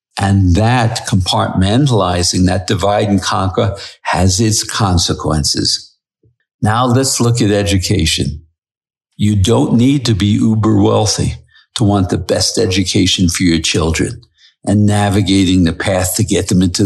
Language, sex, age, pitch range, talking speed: English, male, 60-79, 90-115 Hz, 135 wpm